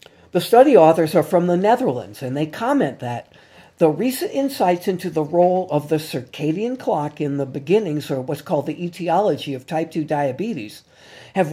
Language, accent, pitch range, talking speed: English, American, 150-200 Hz, 175 wpm